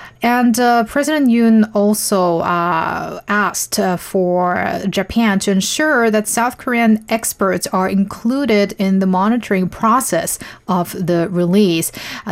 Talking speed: 125 wpm